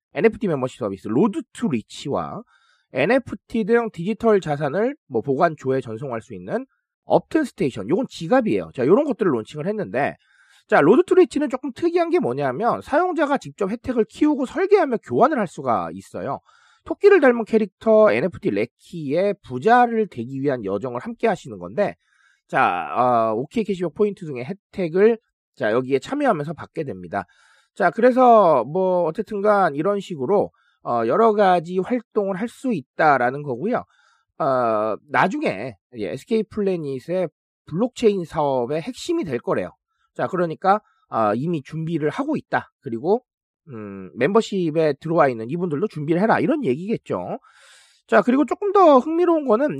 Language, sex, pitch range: Korean, male, 155-255 Hz